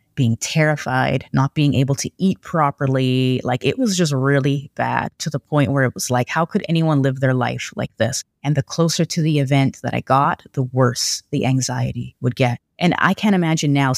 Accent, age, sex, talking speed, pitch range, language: American, 30-49, female, 210 wpm, 130-155 Hz, English